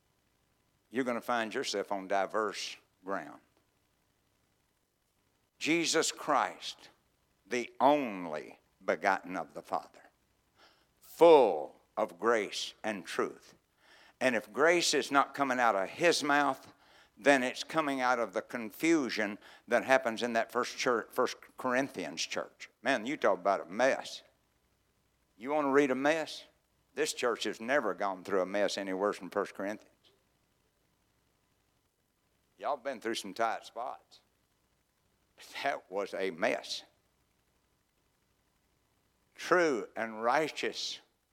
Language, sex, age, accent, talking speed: English, male, 60-79, American, 125 wpm